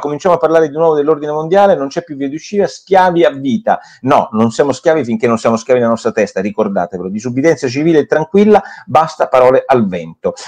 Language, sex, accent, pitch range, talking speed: Italian, male, native, 115-170 Hz, 205 wpm